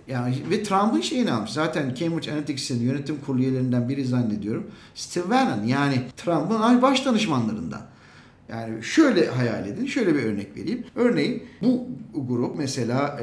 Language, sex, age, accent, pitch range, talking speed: Turkish, male, 50-69, native, 120-170 Hz, 135 wpm